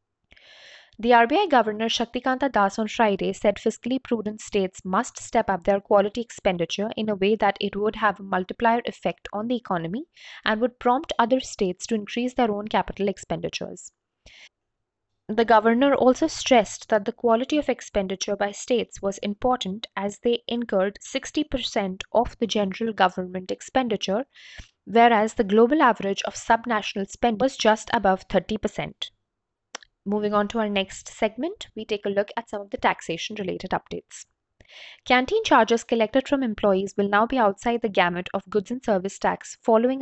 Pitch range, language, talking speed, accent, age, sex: 200-240 Hz, English, 160 wpm, Indian, 20-39, female